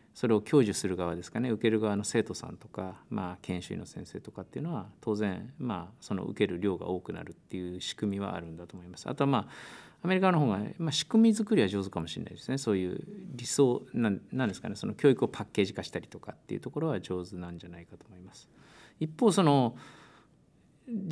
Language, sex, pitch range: Japanese, male, 95-125 Hz